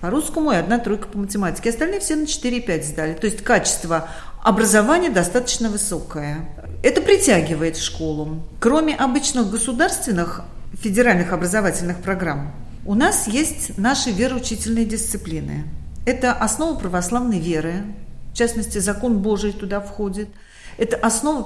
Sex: female